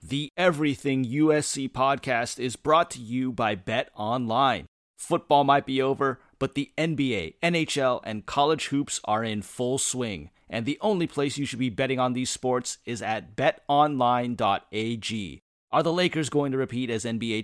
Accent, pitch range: American, 115-145 Hz